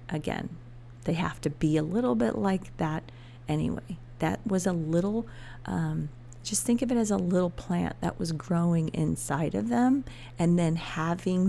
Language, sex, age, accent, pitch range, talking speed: English, female, 40-59, American, 120-185 Hz, 170 wpm